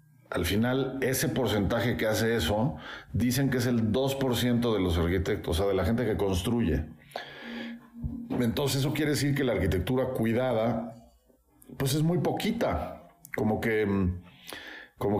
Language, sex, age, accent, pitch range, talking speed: English, male, 50-69, Mexican, 90-130 Hz, 145 wpm